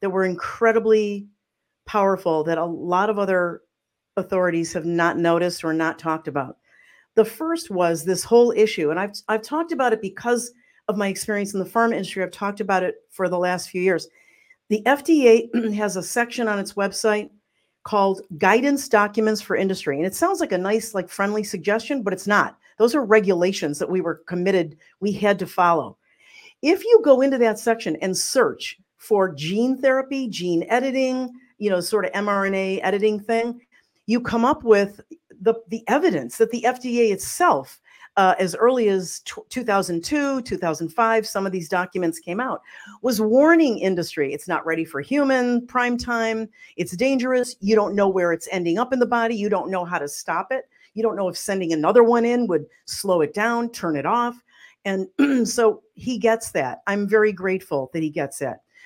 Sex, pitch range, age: female, 185-240 Hz, 50-69